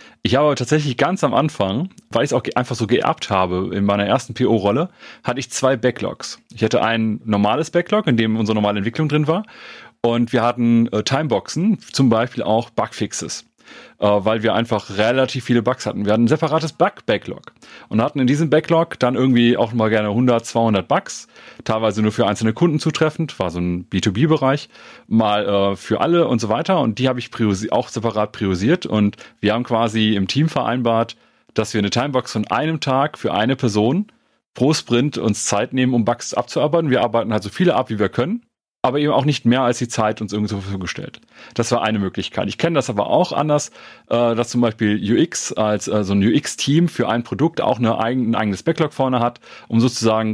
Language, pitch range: German, 110-135 Hz